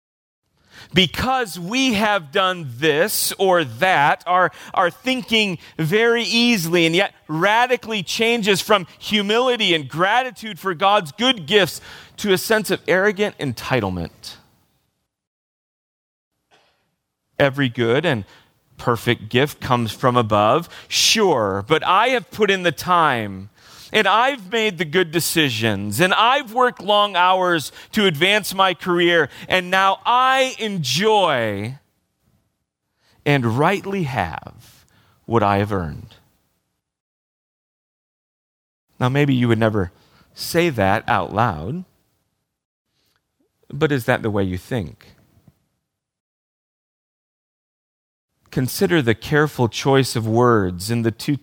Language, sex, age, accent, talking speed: English, male, 40-59, American, 110 wpm